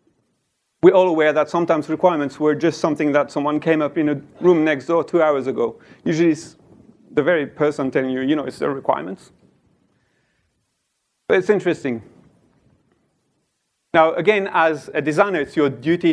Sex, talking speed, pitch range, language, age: male, 165 wpm, 135-170 Hz, English, 30-49